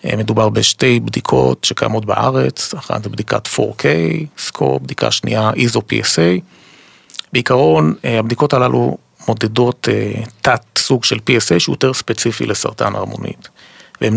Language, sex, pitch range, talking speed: Hebrew, male, 105-125 Hz, 115 wpm